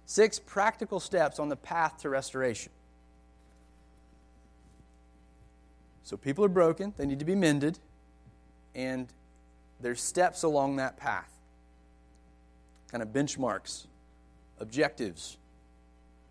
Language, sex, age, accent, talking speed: English, male, 30-49, American, 100 wpm